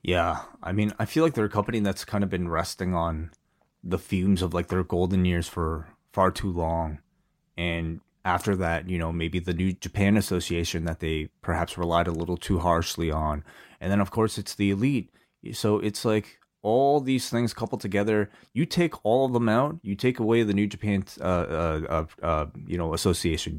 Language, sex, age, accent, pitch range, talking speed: English, male, 30-49, American, 85-110 Hz, 200 wpm